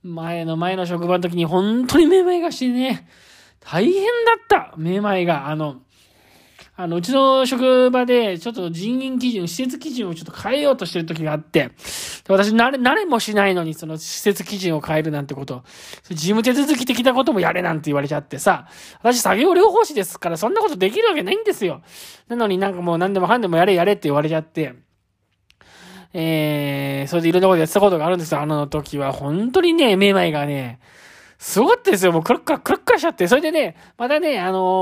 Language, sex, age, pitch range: Japanese, male, 20-39, 170-275 Hz